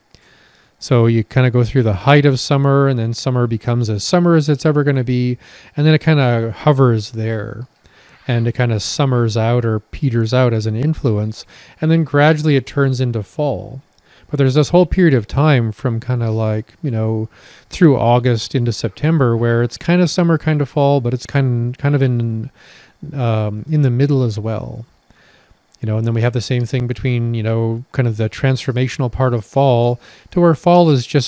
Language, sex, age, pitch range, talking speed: English, male, 30-49, 115-140 Hz, 205 wpm